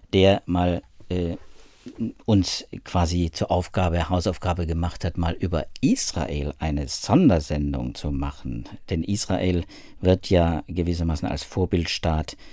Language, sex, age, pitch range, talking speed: German, male, 50-69, 85-115 Hz, 115 wpm